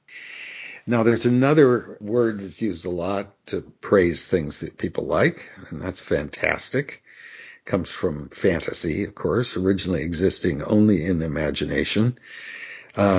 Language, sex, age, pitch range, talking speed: English, male, 60-79, 90-125 Hz, 135 wpm